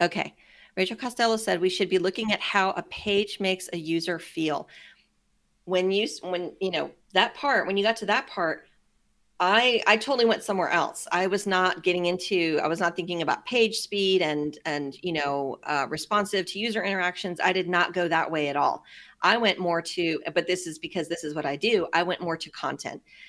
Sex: female